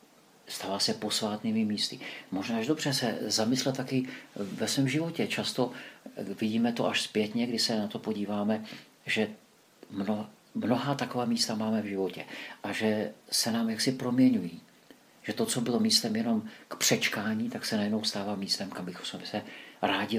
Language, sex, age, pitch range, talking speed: Czech, male, 50-69, 105-135 Hz, 160 wpm